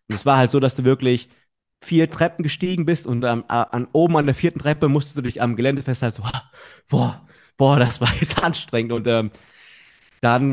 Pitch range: 115-145 Hz